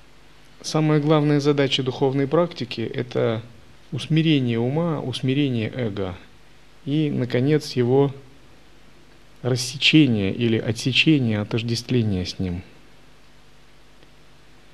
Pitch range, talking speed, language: 115-150 Hz, 75 wpm, Russian